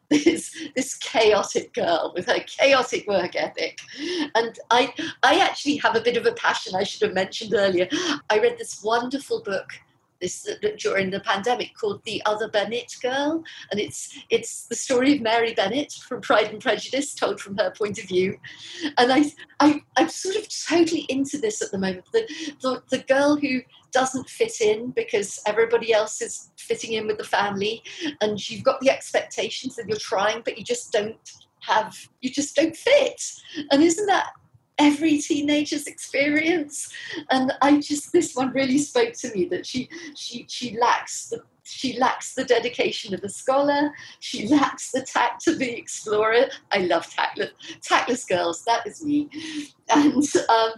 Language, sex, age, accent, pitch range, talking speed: English, female, 40-59, British, 230-315 Hz, 175 wpm